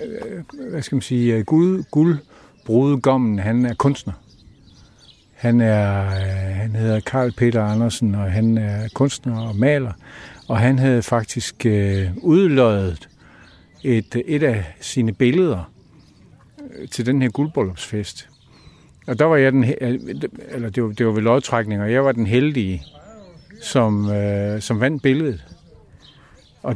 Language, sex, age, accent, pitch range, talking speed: Danish, male, 60-79, native, 100-130 Hz, 130 wpm